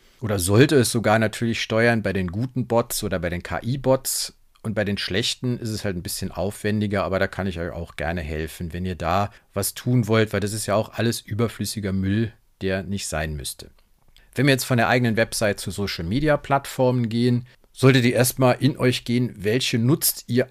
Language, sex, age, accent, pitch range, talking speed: German, male, 40-59, German, 100-125 Hz, 200 wpm